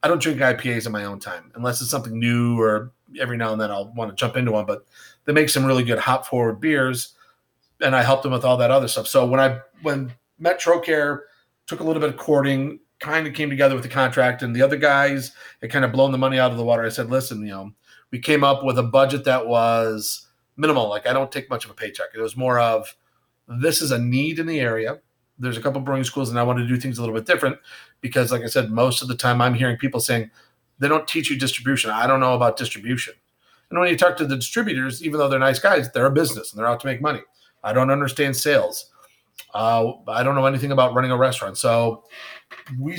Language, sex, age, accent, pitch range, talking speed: English, male, 40-59, American, 120-145 Hz, 250 wpm